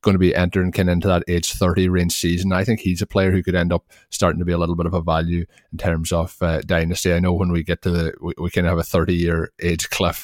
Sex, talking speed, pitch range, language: male, 305 wpm, 85-95 Hz, English